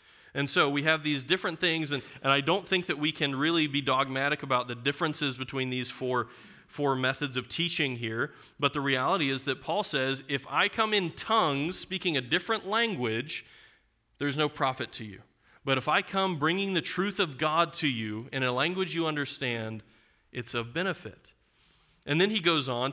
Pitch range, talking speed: 135-180 Hz, 195 wpm